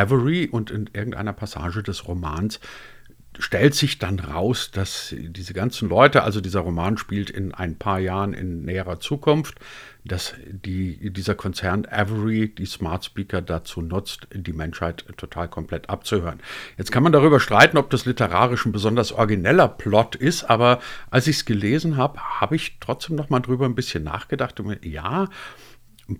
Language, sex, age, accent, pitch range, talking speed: German, male, 50-69, German, 100-140 Hz, 165 wpm